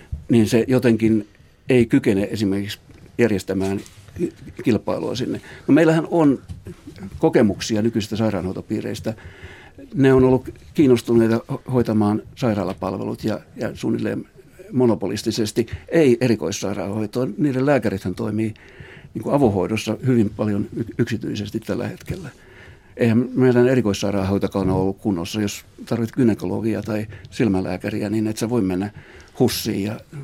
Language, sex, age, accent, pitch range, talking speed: Finnish, male, 60-79, native, 100-130 Hz, 105 wpm